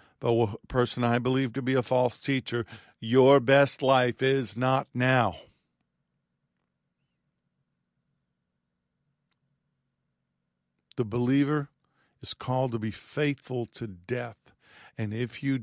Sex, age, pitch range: male, 50-69, 110-135 Hz